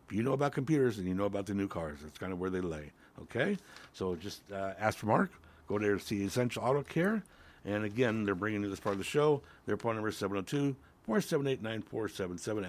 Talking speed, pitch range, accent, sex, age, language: 220 wpm, 90-125 Hz, American, male, 60-79, English